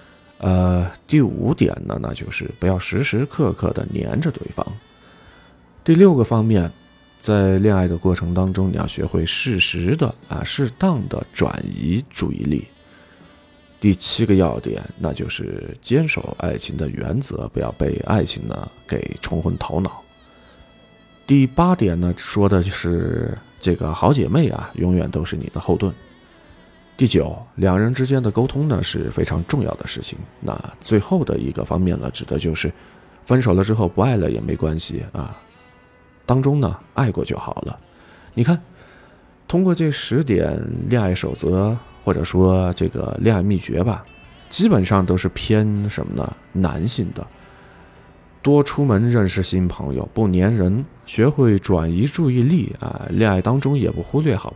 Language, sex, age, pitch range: Chinese, male, 30-49, 90-125 Hz